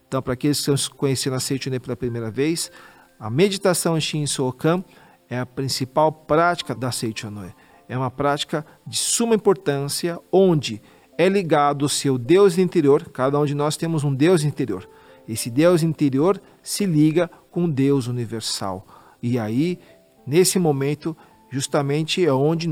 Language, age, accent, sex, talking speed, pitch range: Portuguese, 40-59, Brazilian, male, 160 wpm, 135-175 Hz